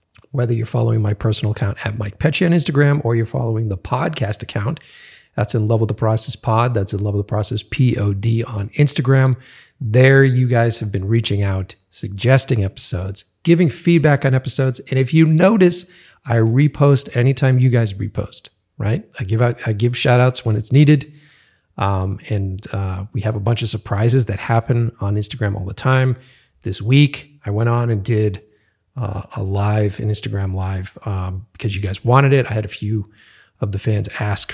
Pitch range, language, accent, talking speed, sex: 100-130 Hz, English, American, 190 wpm, male